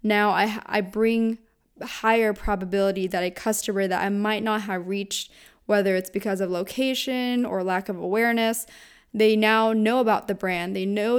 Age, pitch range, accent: 20-39, 190-220 Hz, American